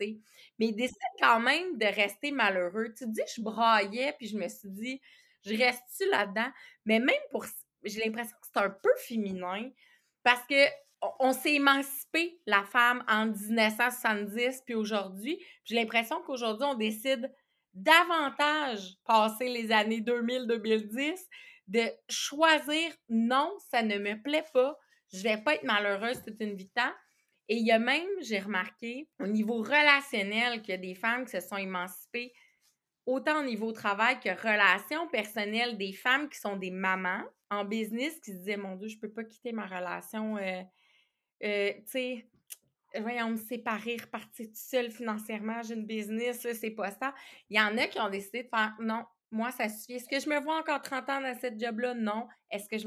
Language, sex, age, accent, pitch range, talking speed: French, female, 30-49, Canadian, 215-265 Hz, 185 wpm